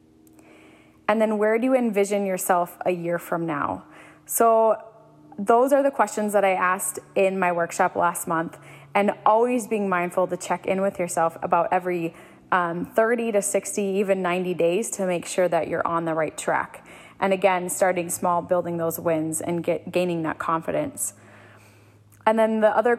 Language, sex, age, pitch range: English, female, 20-39, 170-205 Hz